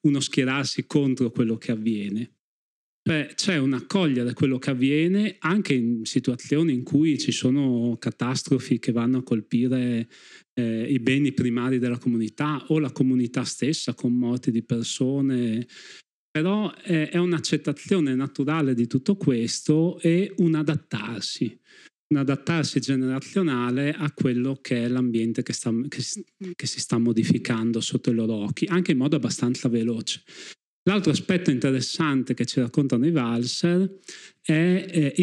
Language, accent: Italian, native